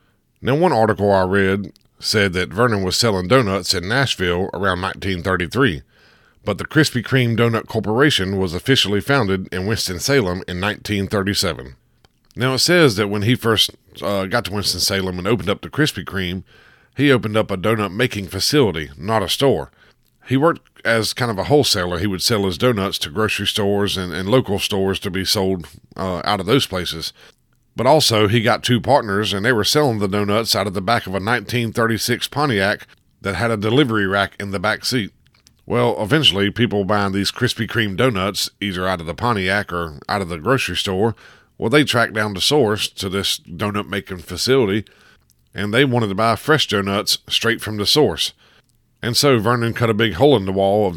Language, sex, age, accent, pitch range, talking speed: English, male, 50-69, American, 95-120 Hz, 190 wpm